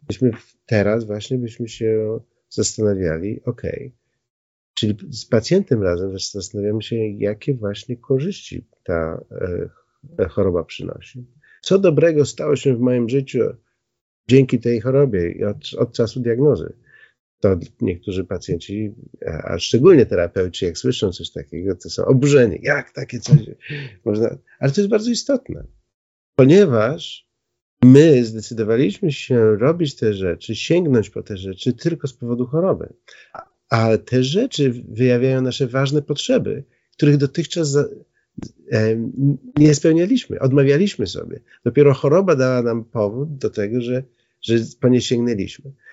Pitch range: 110-145 Hz